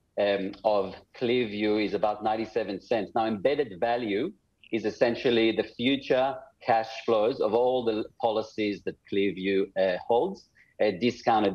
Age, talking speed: 40-59, 135 wpm